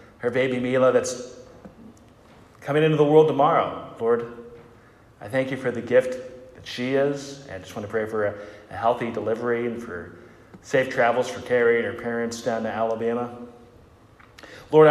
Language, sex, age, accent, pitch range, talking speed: English, male, 30-49, American, 115-140 Hz, 170 wpm